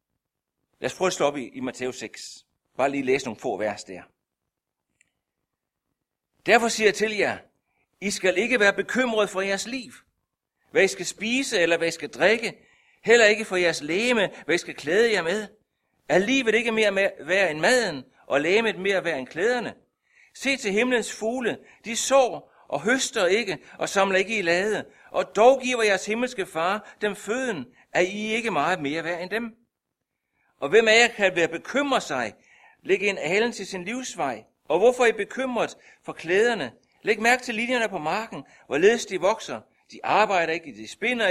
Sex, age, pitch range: male, 60-79, 180-235 Hz